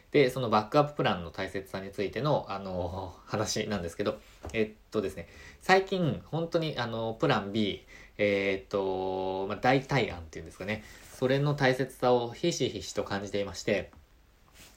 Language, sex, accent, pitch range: Japanese, male, native, 95-125 Hz